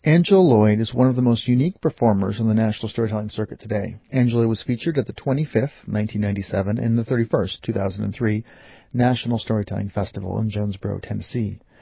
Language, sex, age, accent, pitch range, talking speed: English, male, 40-59, American, 105-130 Hz, 160 wpm